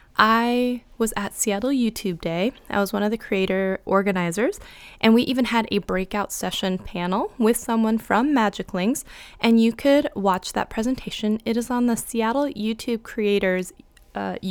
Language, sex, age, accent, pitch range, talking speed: English, female, 20-39, American, 190-225 Hz, 165 wpm